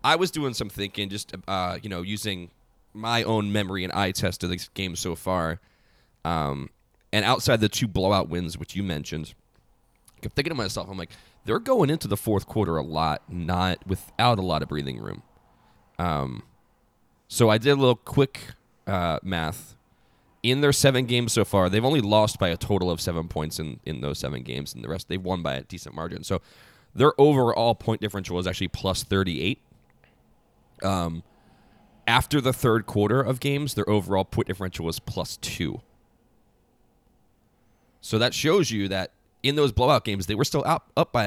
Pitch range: 90-120 Hz